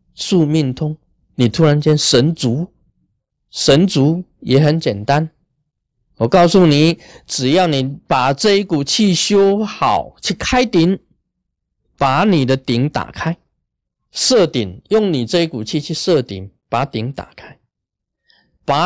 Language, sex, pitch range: Chinese, male, 120-170 Hz